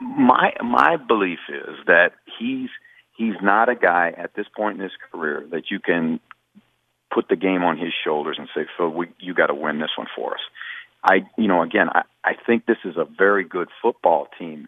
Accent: American